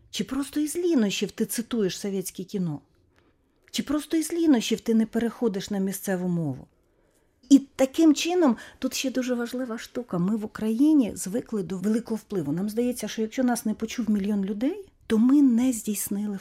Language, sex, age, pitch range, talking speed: Russian, female, 40-59, 195-265 Hz, 170 wpm